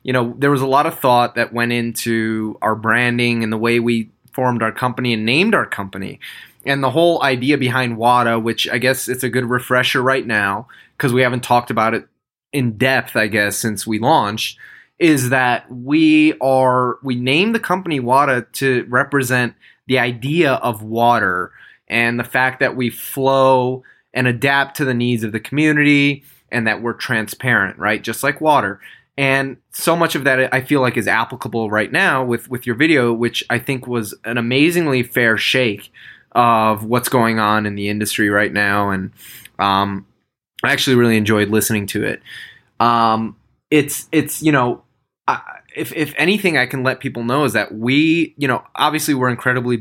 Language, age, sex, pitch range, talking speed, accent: English, 20-39, male, 115-135 Hz, 185 wpm, American